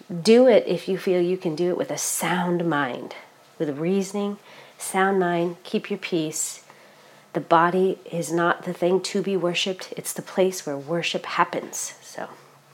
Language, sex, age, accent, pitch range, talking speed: English, female, 40-59, American, 165-205 Hz, 175 wpm